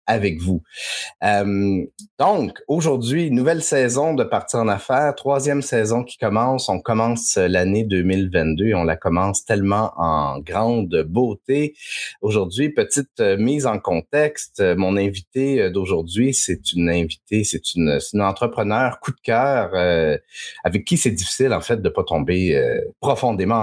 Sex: male